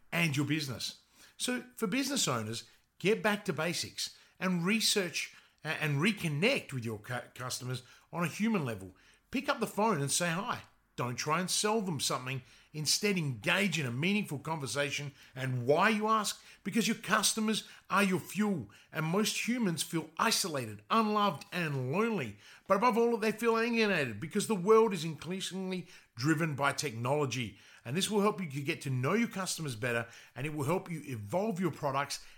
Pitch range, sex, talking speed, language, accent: 130-195 Hz, male, 170 wpm, English, Australian